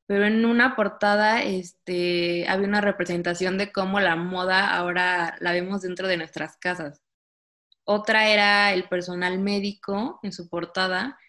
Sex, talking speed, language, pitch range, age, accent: female, 140 wpm, Spanish, 175-205 Hz, 20-39, Mexican